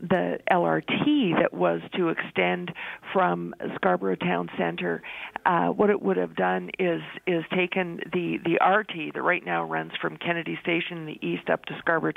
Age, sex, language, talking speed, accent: 50-69, female, English, 175 wpm, American